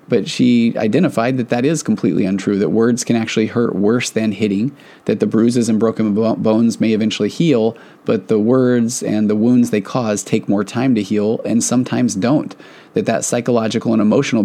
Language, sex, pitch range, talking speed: English, male, 105-125 Hz, 190 wpm